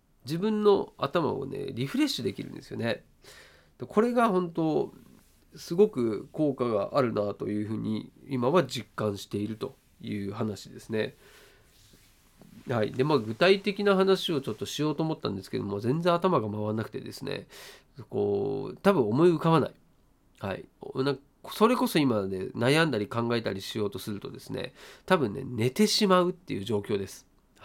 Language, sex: Japanese, male